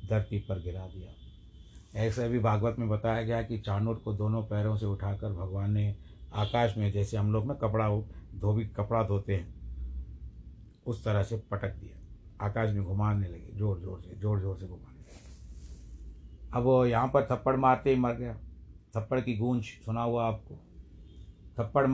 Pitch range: 100-115 Hz